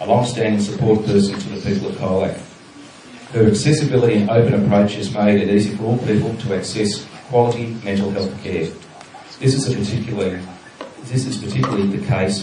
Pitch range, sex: 95-105 Hz, male